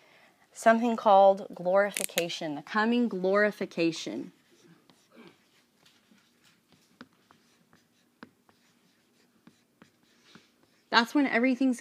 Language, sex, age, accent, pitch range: English, female, 30-49, American, 165-225 Hz